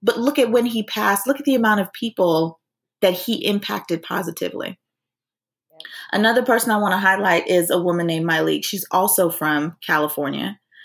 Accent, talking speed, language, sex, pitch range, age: American, 170 wpm, English, female, 165-205 Hz, 20-39